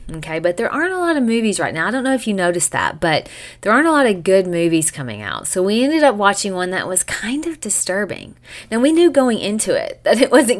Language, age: English, 30-49